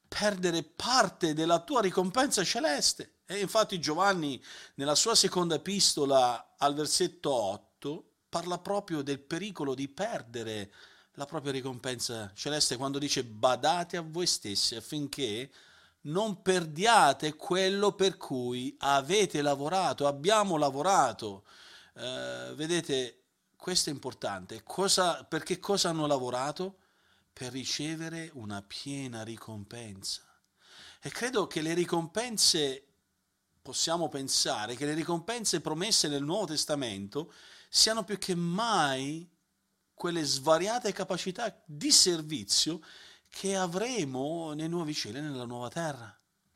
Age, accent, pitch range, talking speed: 40-59, native, 130-180 Hz, 110 wpm